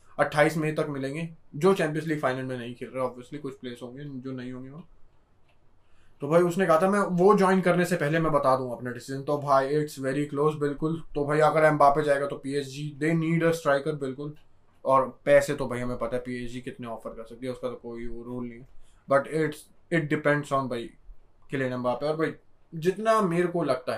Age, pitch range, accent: 20-39, 130-165 Hz, native